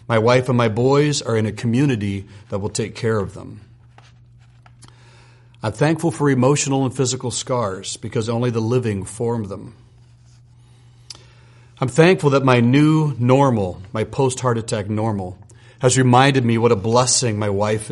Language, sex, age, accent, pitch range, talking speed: English, male, 40-59, American, 110-125 Hz, 155 wpm